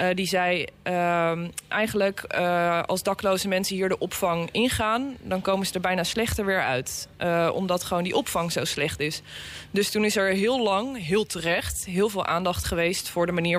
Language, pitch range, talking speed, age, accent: Dutch, 165-190 Hz, 195 wpm, 20-39, Dutch